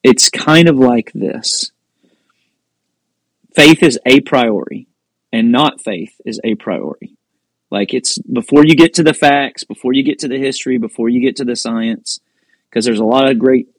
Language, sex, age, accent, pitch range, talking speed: English, male, 30-49, American, 110-135 Hz, 180 wpm